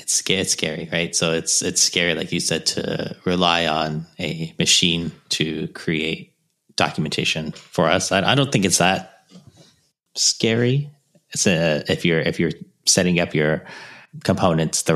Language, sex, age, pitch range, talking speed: English, male, 30-49, 80-95 Hz, 150 wpm